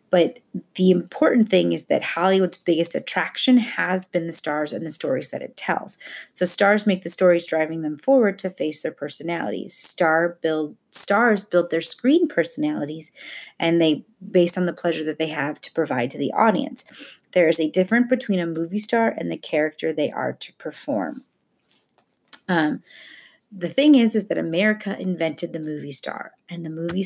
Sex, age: female, 30-49